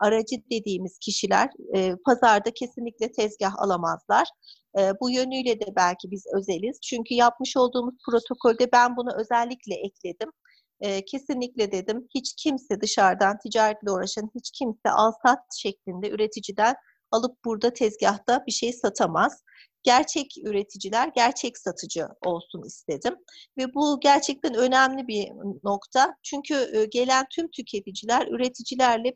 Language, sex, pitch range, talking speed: Turkish, female, 210-260 Hz, 115 wpm